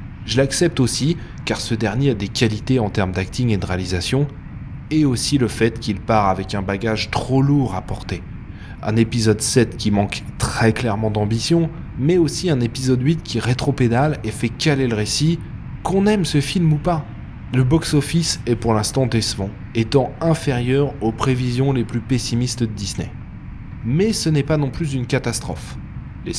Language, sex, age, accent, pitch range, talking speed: French, male, 20-39, French, 115-155 Hz, 180 wpm